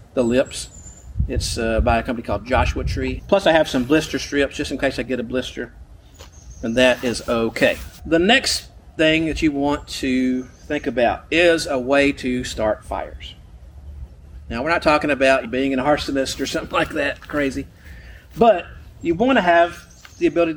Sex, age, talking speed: male, 40-59, 180 wpm